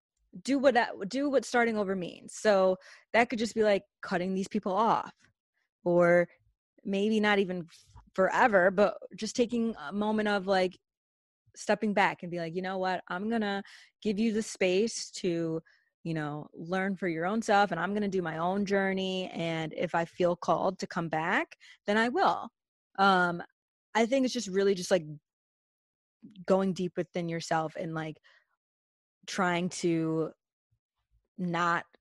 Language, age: English, 20-39